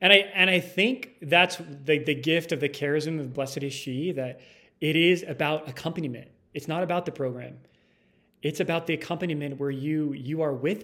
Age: 30-49